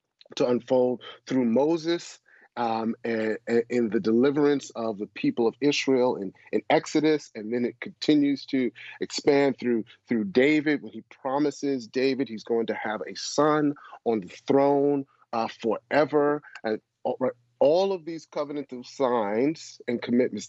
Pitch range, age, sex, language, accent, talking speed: 110-140 Hz, 40-59, male, English, American, 150 wpm